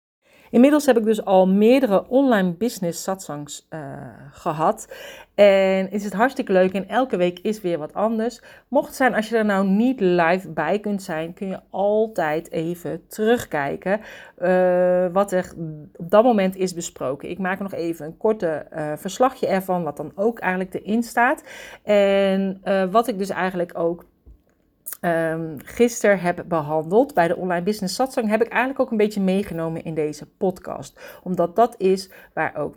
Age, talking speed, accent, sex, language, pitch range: 40-59, 170 wpm, Dutch, female, Dutch, 170-225 Hz